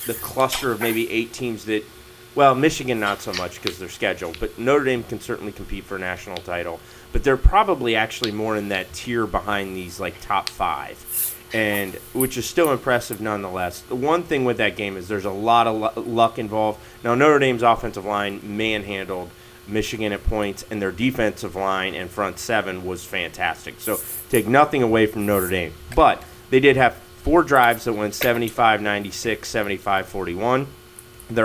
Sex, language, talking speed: male, English, 185 wpm